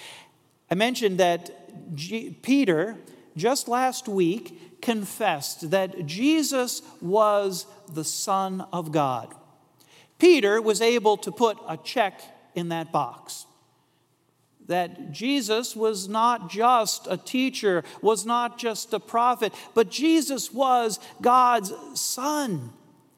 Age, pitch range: 40-59, 165-235 Hz